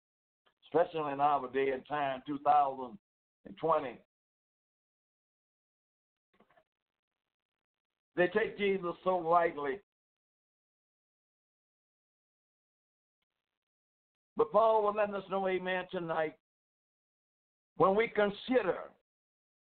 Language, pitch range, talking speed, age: English, 145-195 Hz, 70 wpm, 60-79